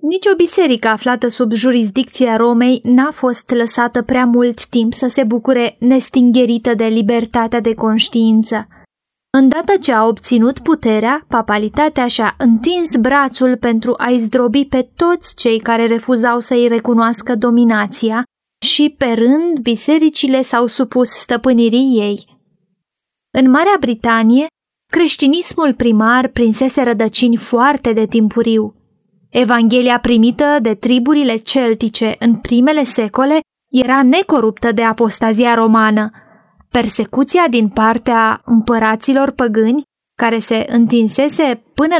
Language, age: Romanian, 20-39